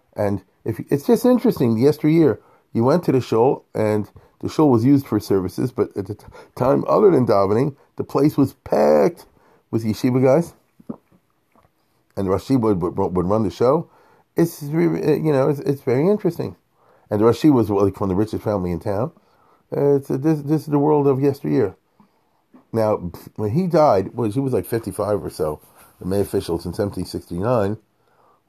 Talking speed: 185 wpm